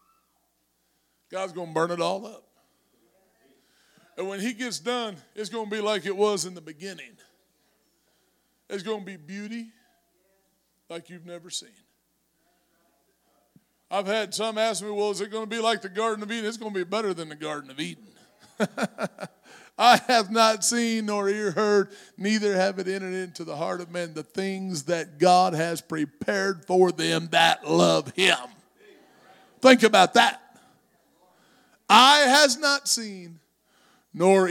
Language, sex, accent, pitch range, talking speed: English, male, American, 175-225 Hz, 160 wpm